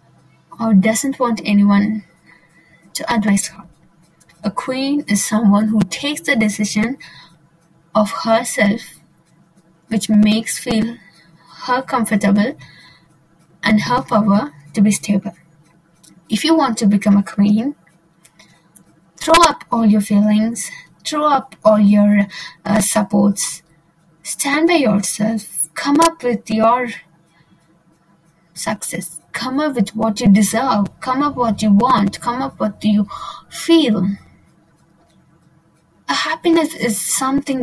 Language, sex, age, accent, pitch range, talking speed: English, female, 20-39, Indian, 165-225 Hz, 120 wpm